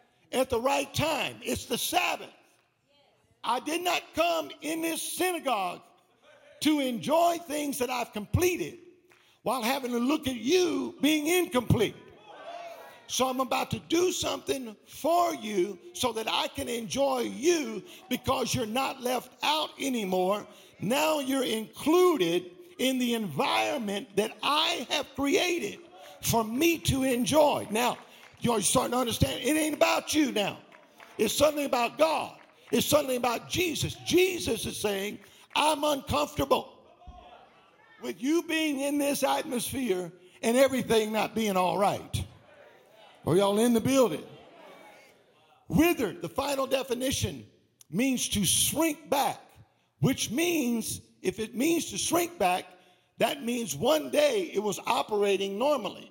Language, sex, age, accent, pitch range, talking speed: English, male, 50-69, American, 230-315 Hz, 135 wpm